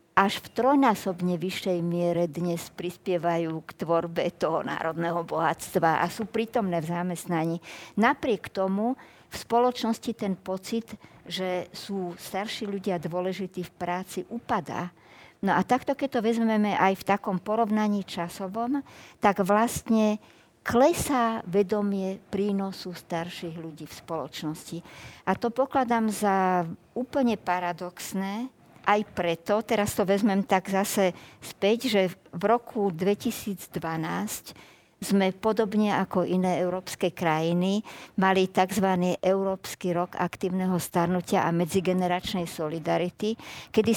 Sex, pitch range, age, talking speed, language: male, 175-215 Hz, 50-69, 115 wpm, Slovak